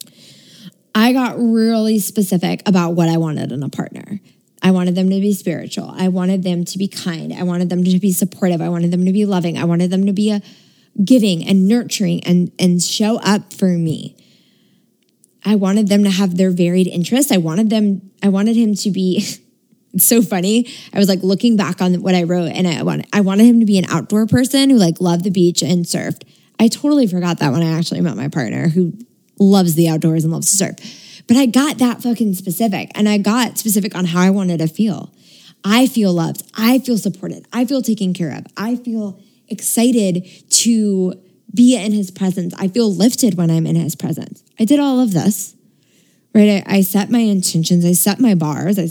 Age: 20-39